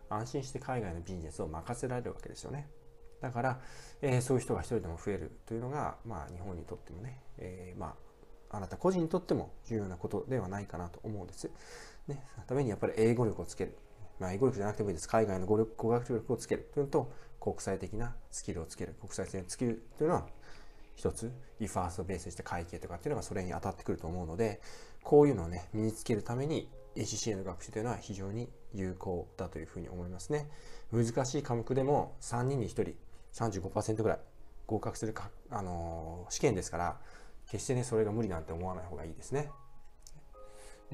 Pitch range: 90-125 Hz